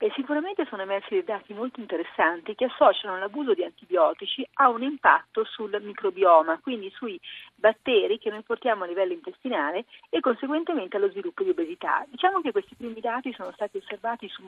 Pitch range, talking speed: 210-340 Hz, 170 wpm